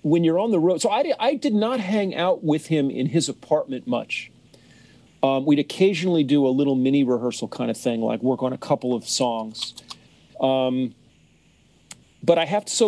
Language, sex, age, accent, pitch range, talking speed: English, male, 40-59, American, 135-185 Hz, 195 wpm